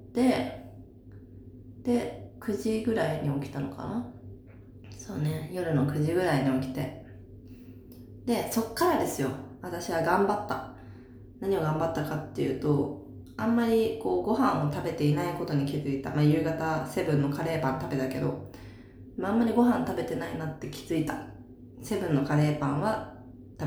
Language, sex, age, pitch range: Japanese, female, 20-39, 125-160 Hz